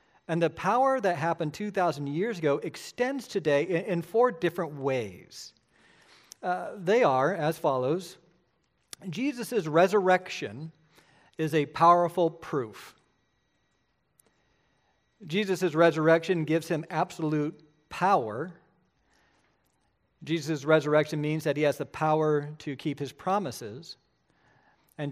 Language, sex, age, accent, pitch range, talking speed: English, male, 50-69, American, 140-175 Hz, 105 wpm